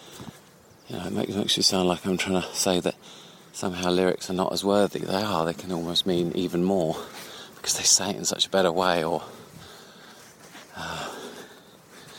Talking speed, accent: 170 wpm, British